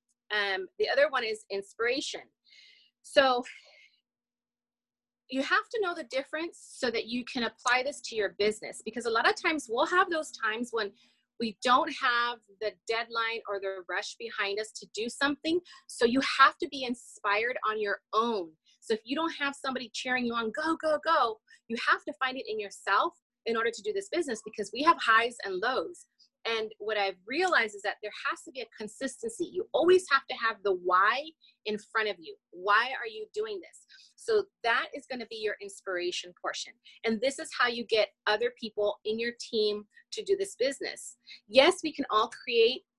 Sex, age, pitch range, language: female, 30-49, 215-300 Hz, English